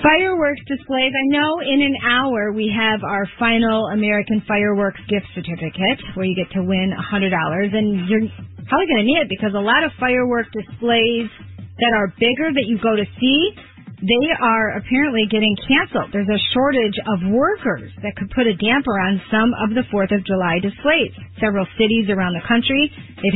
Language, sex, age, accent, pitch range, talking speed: English, female, 40-59, American, 195-250 Hz, 180 wpm